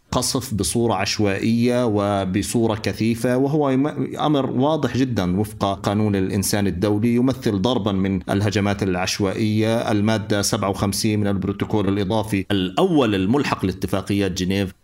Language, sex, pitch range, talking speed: Arabic, male, 100-120 Hz, 110 wpm